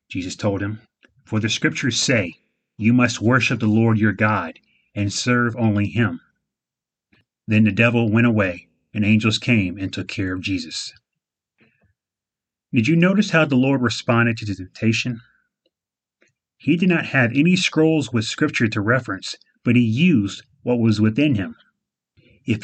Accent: American